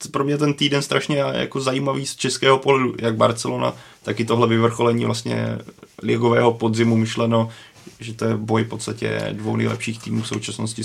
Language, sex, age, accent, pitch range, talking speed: Czech, male, 20-39, native, 115-130 Hz, 170 wpm